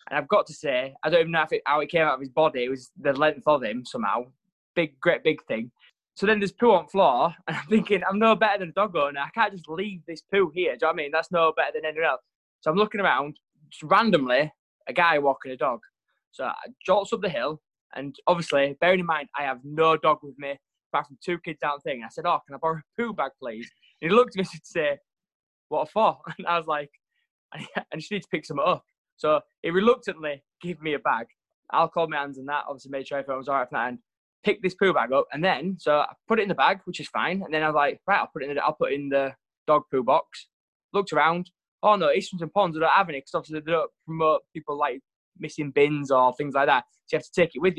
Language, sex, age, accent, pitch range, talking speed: English, male, 20-39, British, 150-195 Hz, 275 wpm